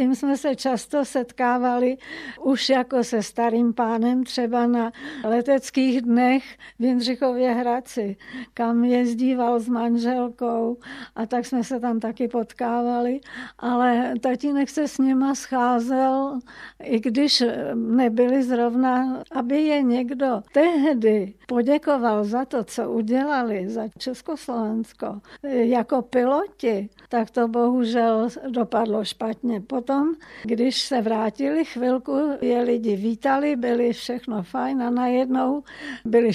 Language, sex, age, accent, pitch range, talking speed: Czech, female, 60-79, native, 240-270 Hz, 115 wpm